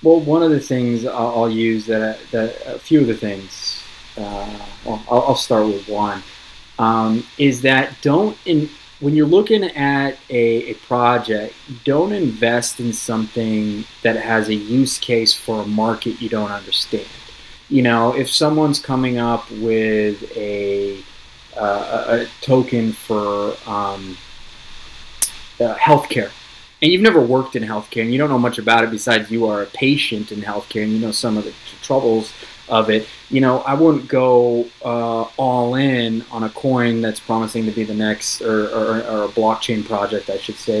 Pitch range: 110-130 Hz